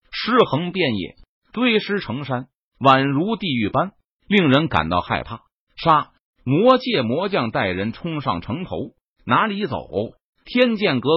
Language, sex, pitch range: Chinese, male, 125-205 Hz